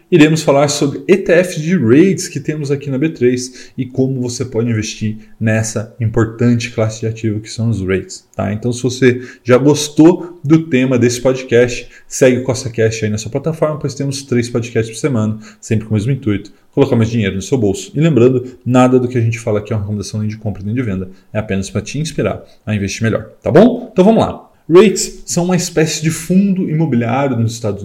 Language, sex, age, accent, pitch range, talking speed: Portuguese, male, 20-39, Brazilian, 110-140 Hz, 215 wpm